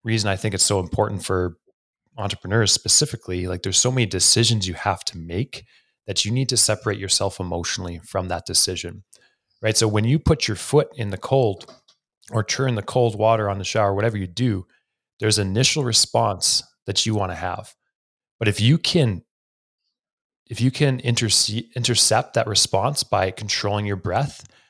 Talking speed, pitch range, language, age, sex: 175 wpm, 95-115 Hz, English, 30-49, male